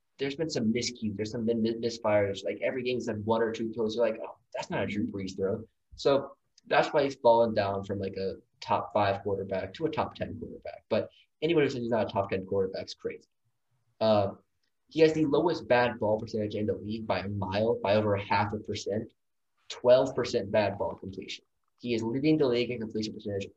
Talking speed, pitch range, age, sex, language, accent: 220 wpm, 105-125 Hz, 10-29, male, English, American